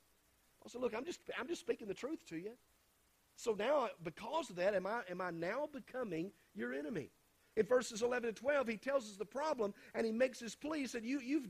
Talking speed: 215 wpm